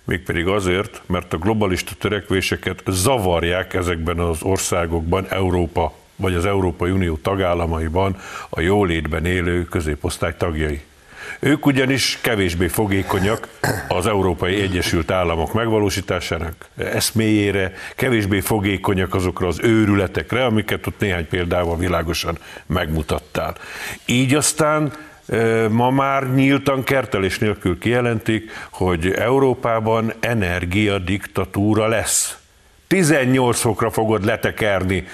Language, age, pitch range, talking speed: Hungarian, 50-69, 90-110 Hz, 100 wpm